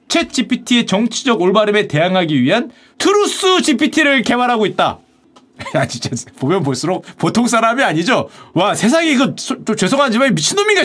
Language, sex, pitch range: Korean, male, 210-290 Hz